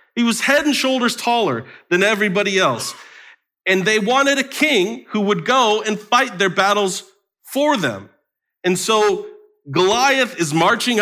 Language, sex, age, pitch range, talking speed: English, male, 40-59, 150-225 Hz, 155 wpm